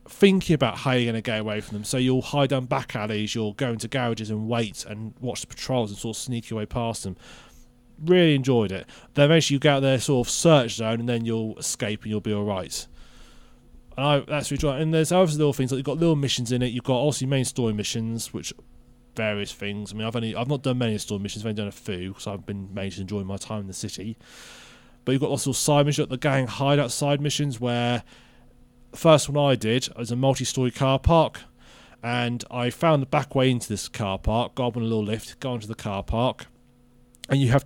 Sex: male